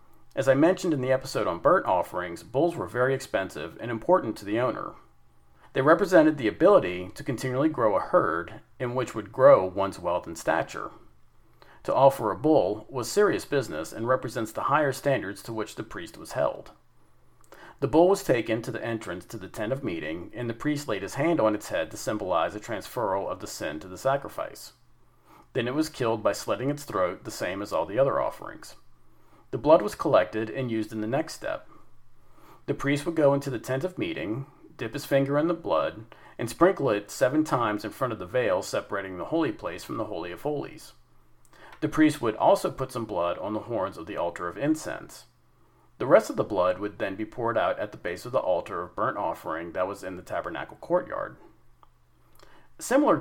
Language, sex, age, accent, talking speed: English, male, 40-59, American, 205 wpm